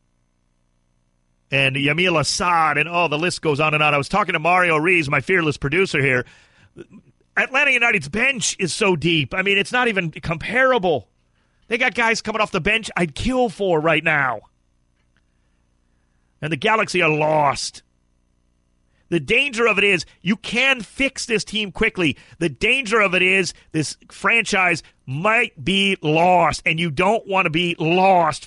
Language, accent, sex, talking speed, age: English, American, male, 165 wpm, 40-59